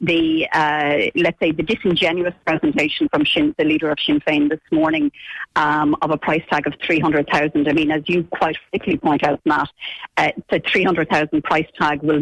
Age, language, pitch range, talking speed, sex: 40-59, English, 155-215 Hz, 185 wpm, female